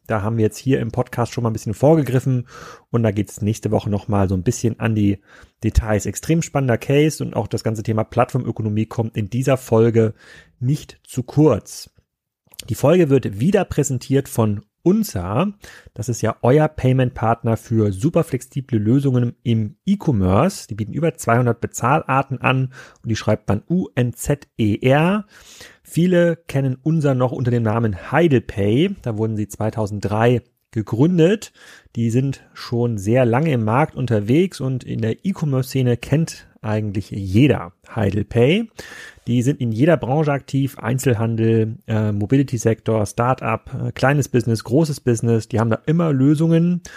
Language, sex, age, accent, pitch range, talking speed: German, male, 30-49, German, 110-140 Hz, 150 wpm